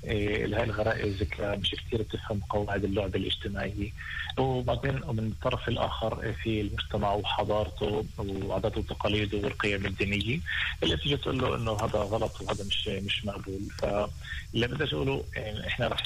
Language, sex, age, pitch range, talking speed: Hebrew, male, 30-49, 100-110 Hz, 130 wpm